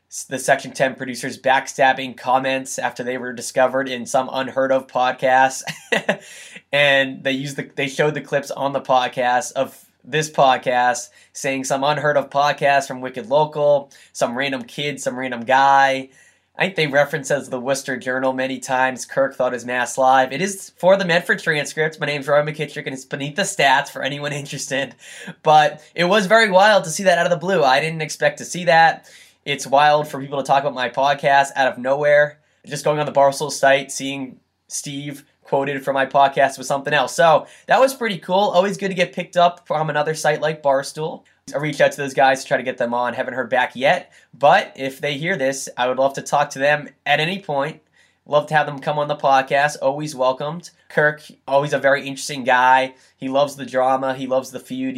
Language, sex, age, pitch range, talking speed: English, male, 10-29, 130-150 Hz, 210 wpm